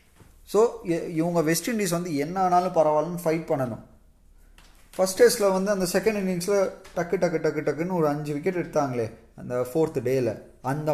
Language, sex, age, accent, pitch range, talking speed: Tamil, male, 20-39, native, 130-180 Hz, 155 wpm